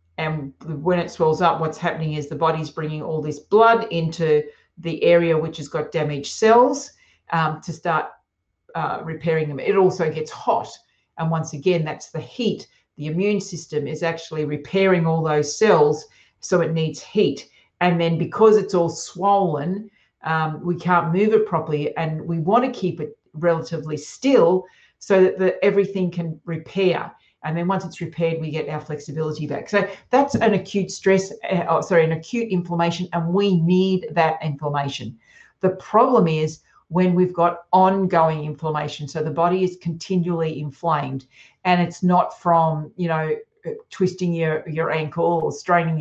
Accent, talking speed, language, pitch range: Australian, 165 wpm, English, 155-185 Hz